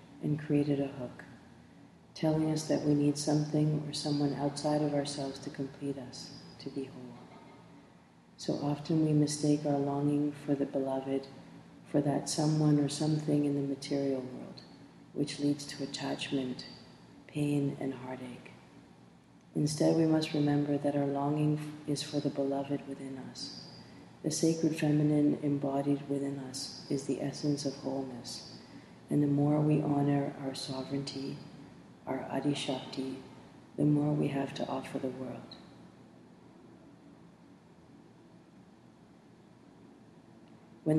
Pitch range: 135-150 Hz